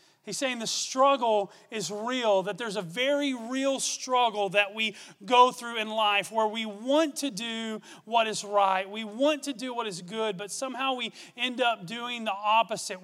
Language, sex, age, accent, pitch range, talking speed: English, male, 30-49, American, 200-245 Hz, 190 wpm